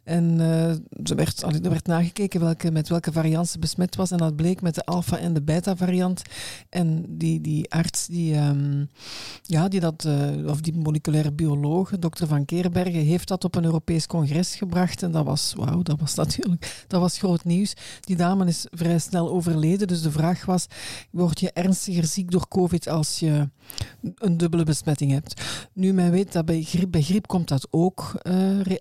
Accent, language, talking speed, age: Dutch, Dutch, 190 wpm, 50-69